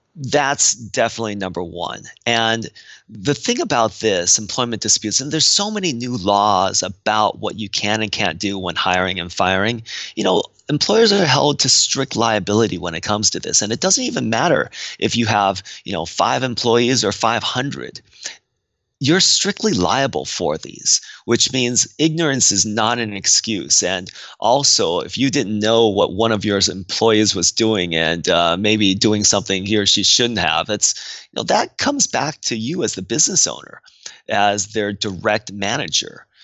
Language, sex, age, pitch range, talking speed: English, male, 30-49, 100-120 Hz, 175 wpm